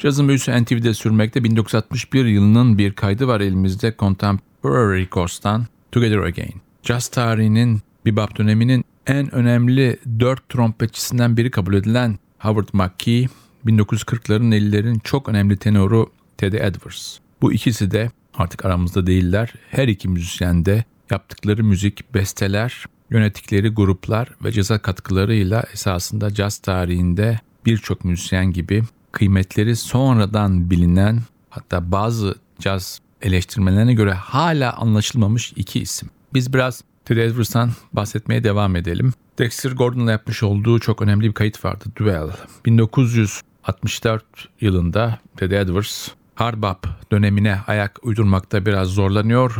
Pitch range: 100-115 Hz